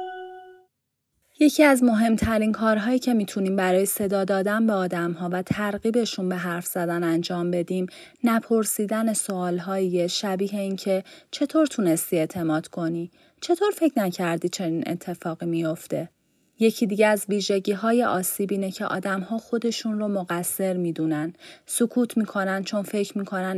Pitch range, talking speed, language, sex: 175-215 Hz, 125 wpm, Persian, female